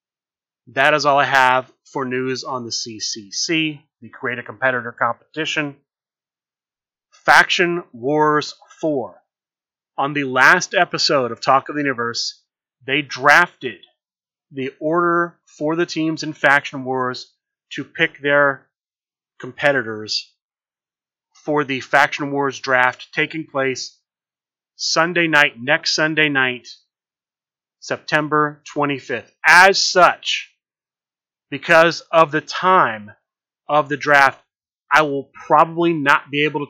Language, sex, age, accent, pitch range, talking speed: English, male, 30-49, American, 135-155 Hz, 115 wpm